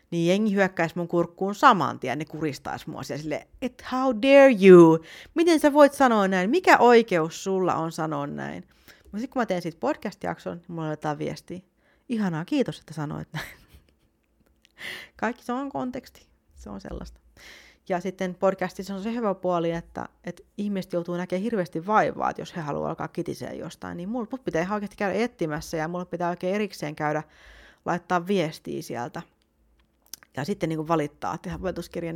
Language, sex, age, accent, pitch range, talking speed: Finnish, female, 30-49, native, 160-210 Hz, 170 wpm